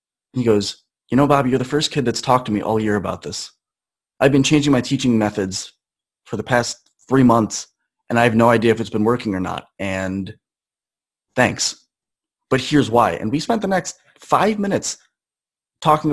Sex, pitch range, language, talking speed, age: male, 120-155 Hz, English, 195 wpm, 30-49